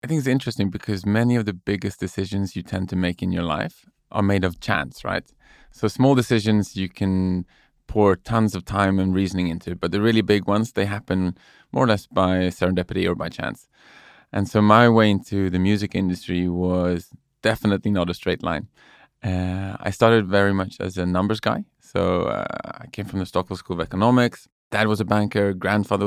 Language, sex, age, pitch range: English, male, 20-39, 95-110 Hz